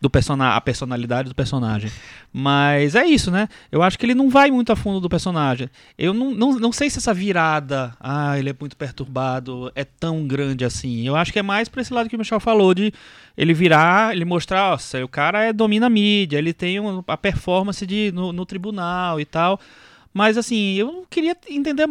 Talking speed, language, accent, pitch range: 200 wpm, Portuguese, Brazilian, 140-205 Hz